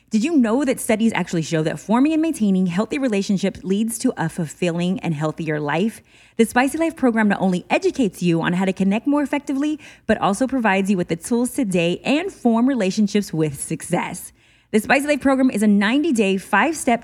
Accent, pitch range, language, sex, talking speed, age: American, 180-265 Hz, English, female, 195 wpm, 20-39